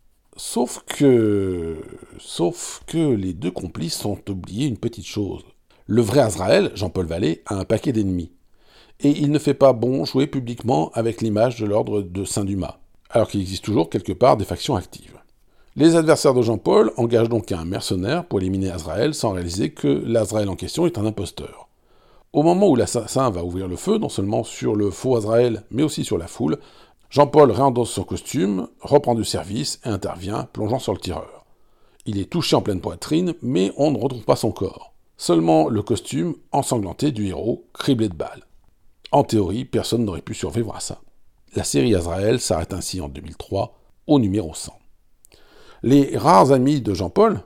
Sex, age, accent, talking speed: male, 50-69, French, 180 wpm